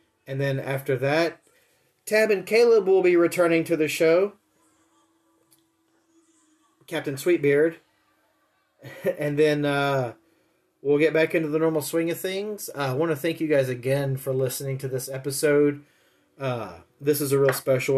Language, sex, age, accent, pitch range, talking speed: English, male, 30-49, American, 130-150 Hz, 155 wpm